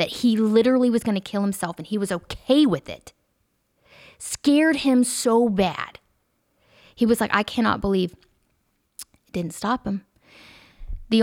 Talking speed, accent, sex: 150 wpm, American, female